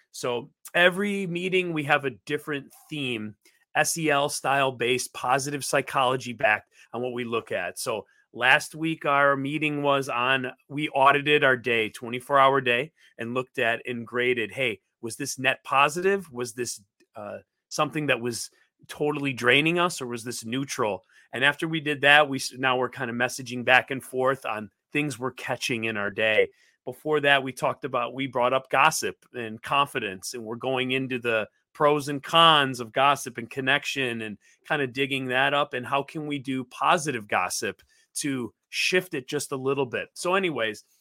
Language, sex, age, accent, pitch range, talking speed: English, male, 30-49, American, 125-155 Hz, 180 wpm